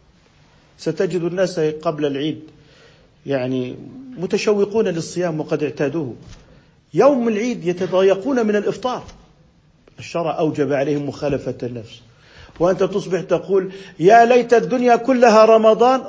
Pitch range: 140-200 Hz